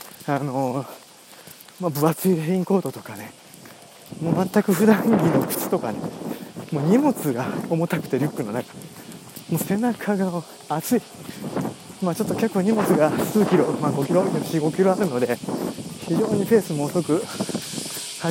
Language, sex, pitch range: Japanese, male, 150-195 Hz